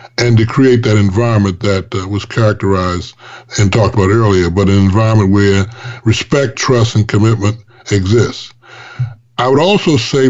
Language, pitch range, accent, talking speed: English, 110-130 Hz, American, 150 wpm